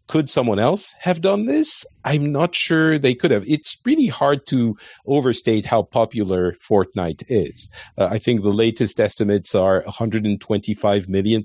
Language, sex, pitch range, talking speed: English, male, 100-125 Hz, 155 wpm